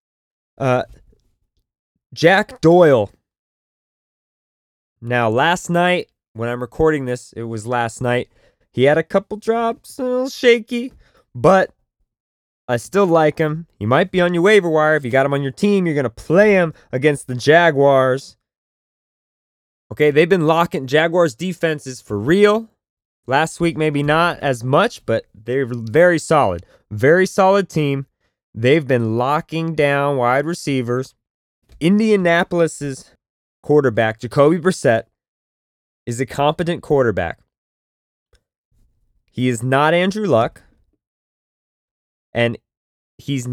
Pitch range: 120-165 Hz